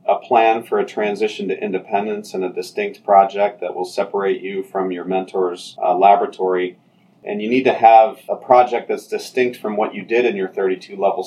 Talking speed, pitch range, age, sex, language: 190 wpm, 95-125 Hz, 40-59, male, English